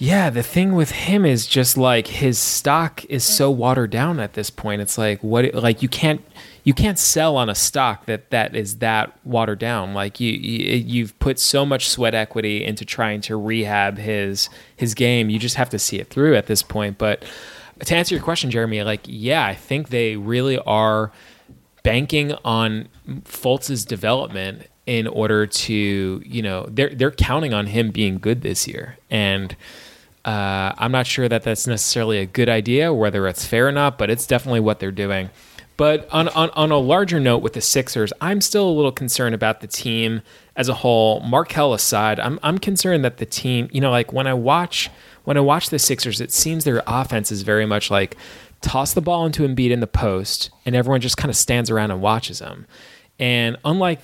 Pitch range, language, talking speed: 110-135 Hz, English, 200 wpm